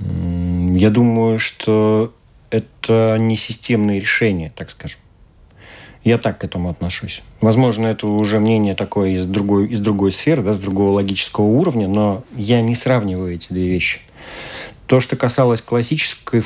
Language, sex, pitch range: Russian, male, 100-120 Hz